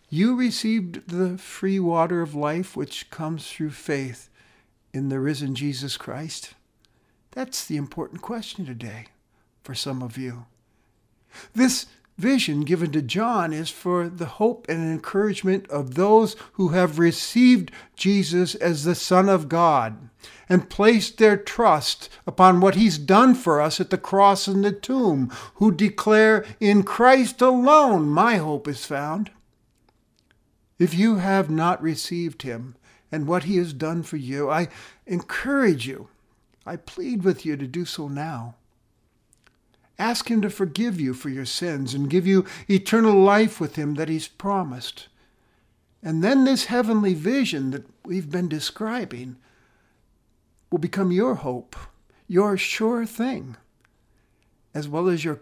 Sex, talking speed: male, 145 wpm